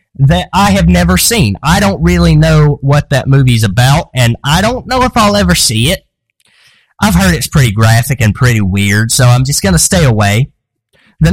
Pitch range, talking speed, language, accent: 125-175 Hz, 200 wpm, English, American